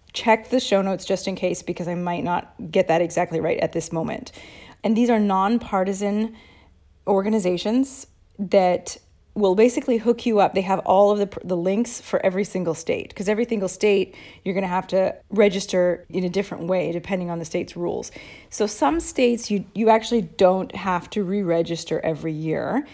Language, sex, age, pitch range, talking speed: English, female, 30-49, 175-215 Hz, 185 wpm